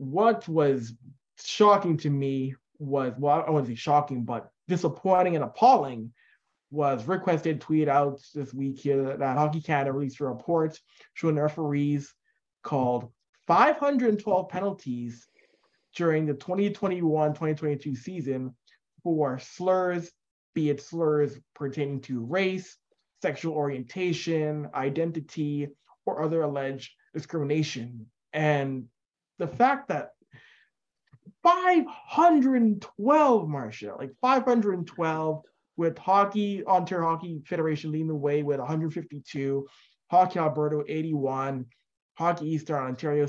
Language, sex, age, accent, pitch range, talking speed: English, male, 20-39, American, 140-175 Hz, 110 wpm